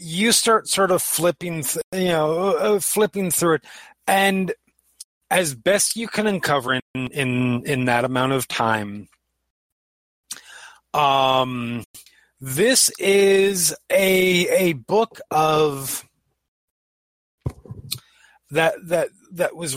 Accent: American